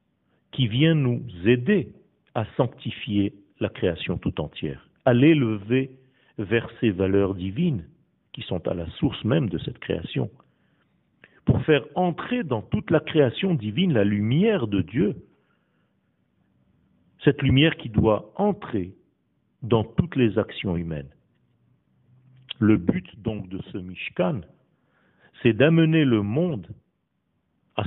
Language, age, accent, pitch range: French, 50-69, French, 105-155 Hz